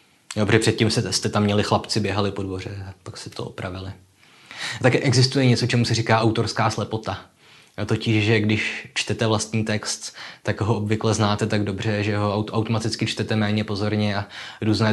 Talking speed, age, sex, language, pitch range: 175 wpm, 20-39, male, Czech, 105-115 Hz